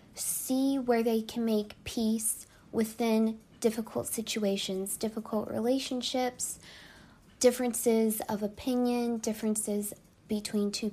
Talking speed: 95 wpm